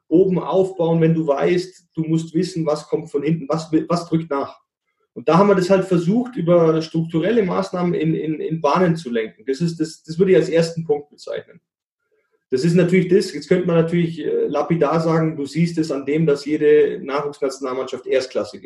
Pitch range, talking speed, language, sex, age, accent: 150-185 Hz, 195 wpm, German, male, 30-49, German